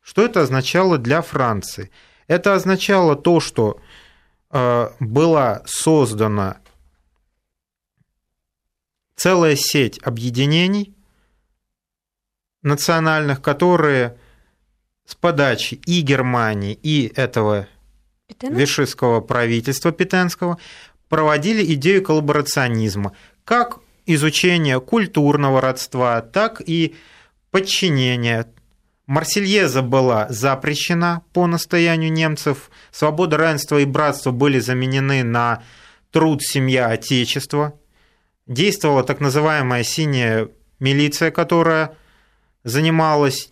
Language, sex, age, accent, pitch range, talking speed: Russian, male, 30-49, native, 120-160 Hz, 80 wpm